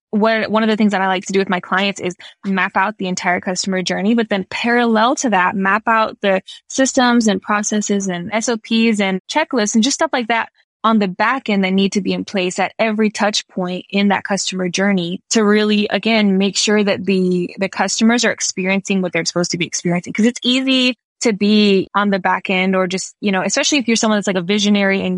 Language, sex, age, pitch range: English, female, 10-29, 185-220 Hz